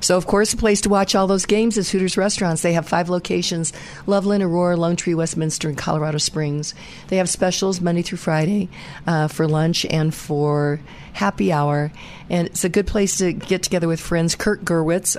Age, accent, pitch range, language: 50-69, American, 155-180 Hz, English